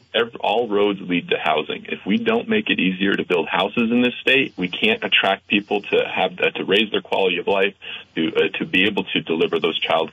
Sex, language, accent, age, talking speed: male, English, American, 40-59, 235 wpm